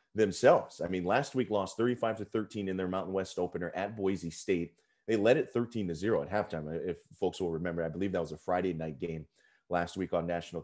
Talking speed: 230 wpm